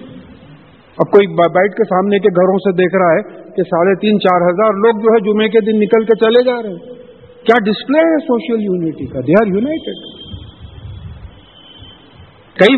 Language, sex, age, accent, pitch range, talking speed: English, male, 50-69, Indian, 200-275 Hz, 165 wpm